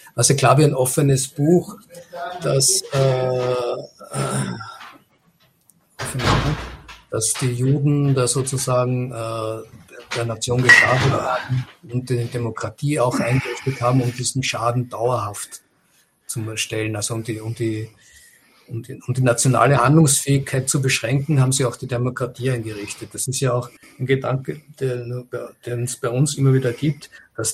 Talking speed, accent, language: 140 wpm, German, German